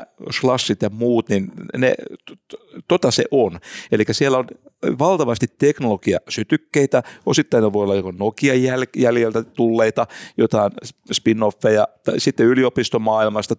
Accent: native